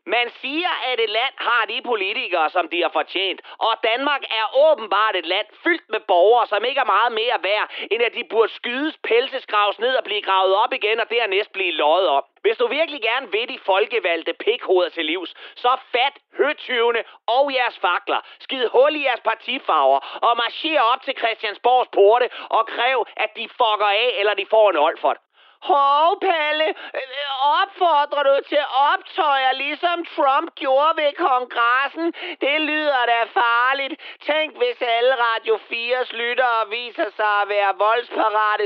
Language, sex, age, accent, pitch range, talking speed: Danish, male, 30-49, native, 225-315 Hz, 170 wpm